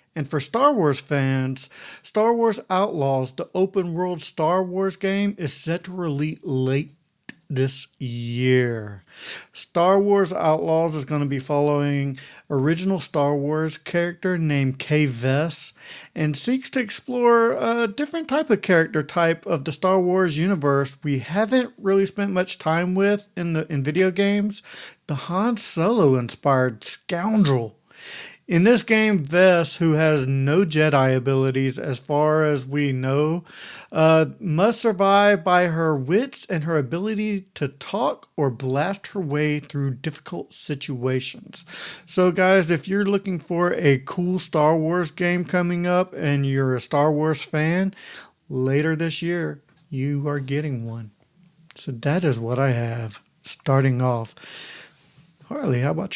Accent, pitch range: American, 140-185 Hz